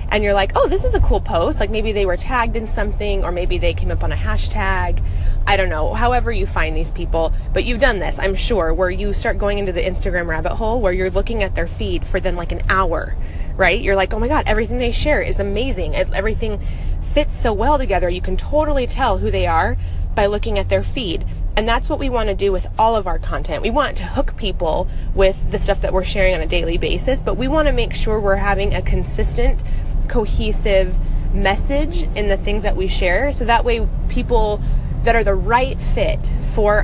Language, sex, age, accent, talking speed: English, female, 20-39, American, 225 wpm